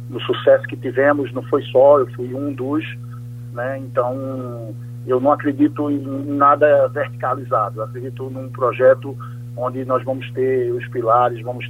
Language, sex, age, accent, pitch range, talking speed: Portuguese, male, 50-69, Brazilian, 120-135 Hz, 155 wpm